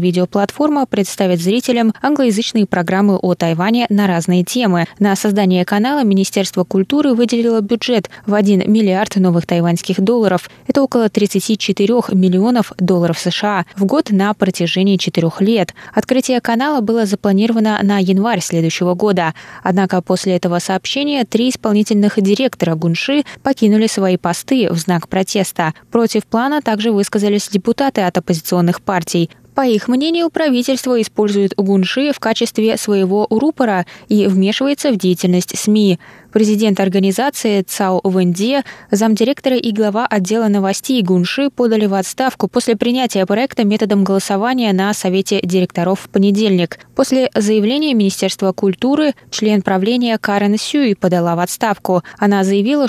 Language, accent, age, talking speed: Russian, native, 20-39, 135 wpm